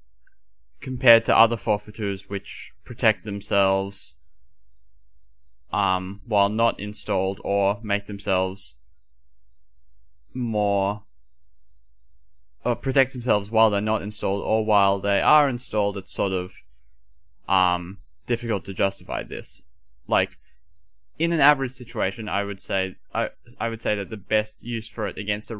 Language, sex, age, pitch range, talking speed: English, male, 10-29, 80-105 Hz, 130 wpm